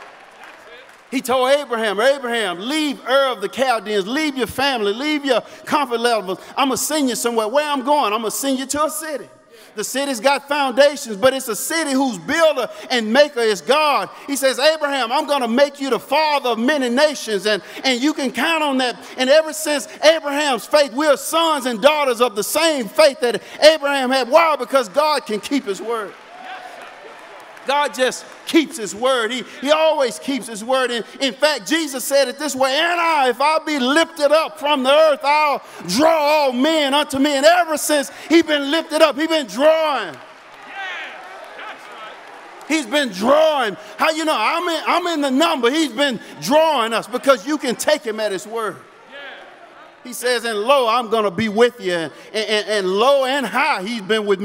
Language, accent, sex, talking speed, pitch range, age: English, American, male, 195 wpm, 240-305 Hz, 50-69